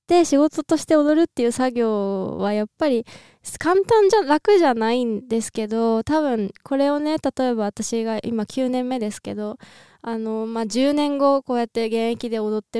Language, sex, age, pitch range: Japanese, female, 20-39, 215-280 Hz